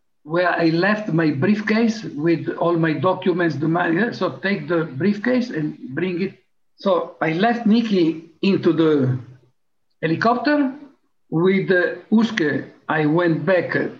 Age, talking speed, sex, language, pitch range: 60-79, 120 wpm, male, English, 165-220 Hz